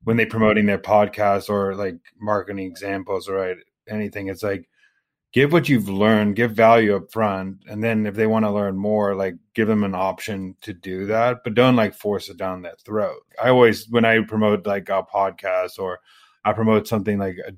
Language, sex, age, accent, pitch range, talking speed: English, male, 30-49, American, 100-115 Hz, 195 wpm